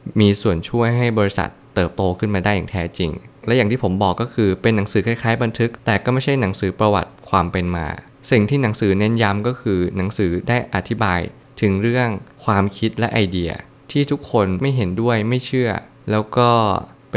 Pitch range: 95-120 Hz